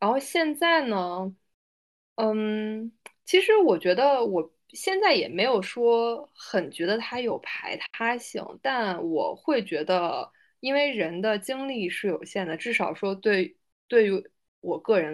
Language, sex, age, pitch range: Chinese, female, 20-39, 175-225 Hz